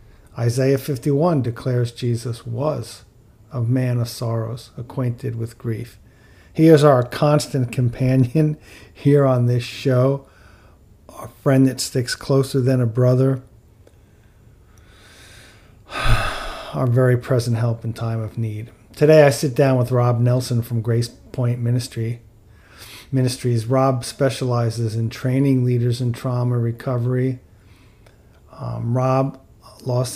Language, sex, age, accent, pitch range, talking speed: English, male, 40-59, American, 110-130 Hz, 120 wpm